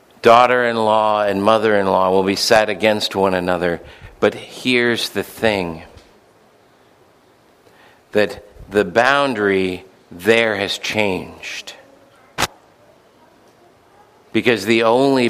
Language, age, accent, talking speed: English, 50-69, American, 85 wpm